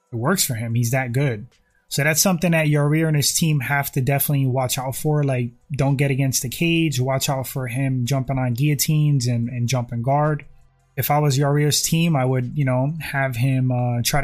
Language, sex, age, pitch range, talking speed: English, male, 20-39, 130-150 Hz, 215 wpm